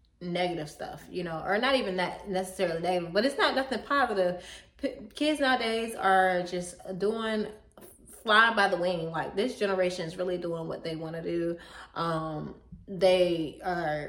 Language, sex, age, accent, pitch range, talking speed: English, female, 20-39, American, 170-205 Hz, 165 wpm